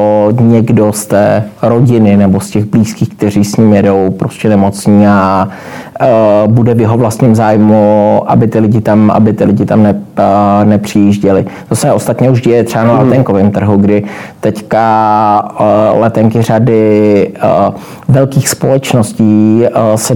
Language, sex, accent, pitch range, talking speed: Czech, male, native, 105-115 Hz, 125 wpm